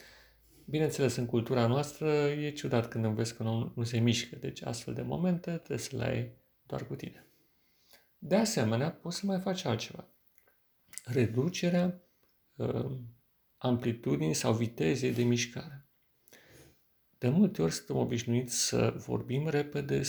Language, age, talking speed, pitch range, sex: Romanian, 40-59, 135 wpm, 115-145 Hz, male